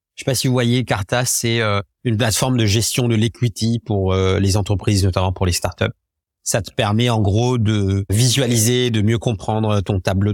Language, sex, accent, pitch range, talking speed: French, male, French, 100-125 Hz, 210 wpm